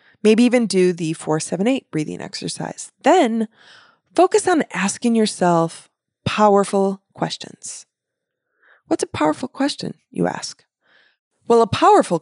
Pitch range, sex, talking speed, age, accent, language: 180-270 Hz, female, 115 wpm, 20-39, American, English